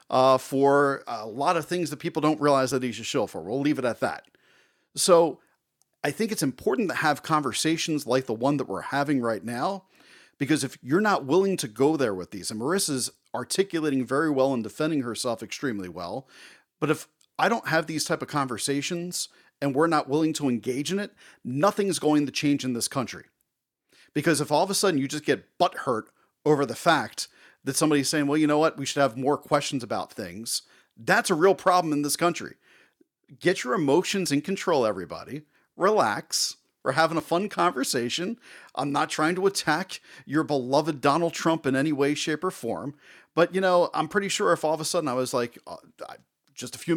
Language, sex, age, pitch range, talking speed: English, male, 40-59, 135-165 Hz, 205 wpm